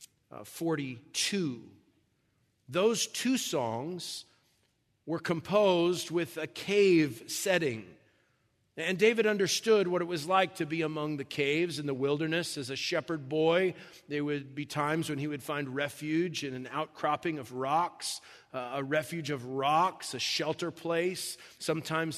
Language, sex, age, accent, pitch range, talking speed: English, male, 40-59, American, 145-175 Hz, 140 wpm